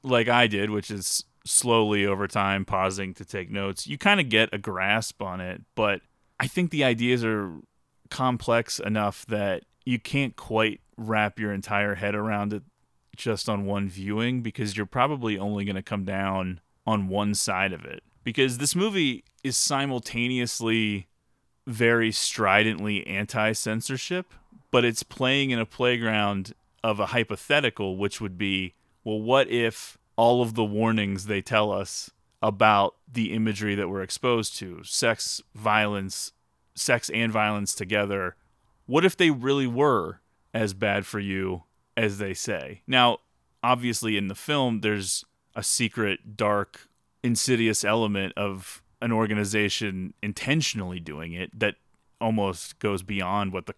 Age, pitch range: 30-49, 100-115 Hz